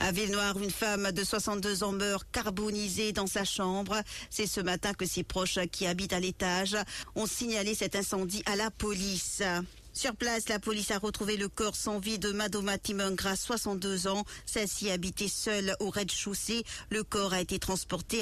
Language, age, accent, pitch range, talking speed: English, 50-69, French, 190-215 Hz, 180 wpm